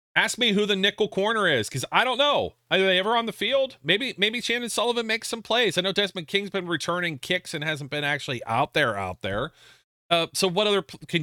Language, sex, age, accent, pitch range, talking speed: English, male, 40-59, American, 125-180 Hz, 235 wpm